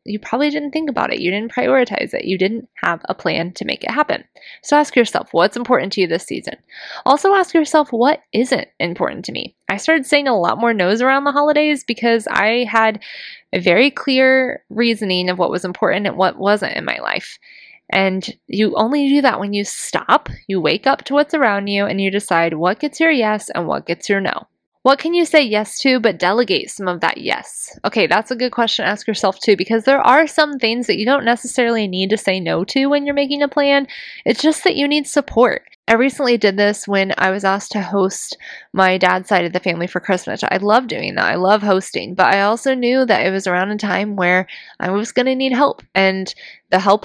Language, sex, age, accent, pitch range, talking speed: English, female, 20-39, American, 195-275 Hz, 230 wpm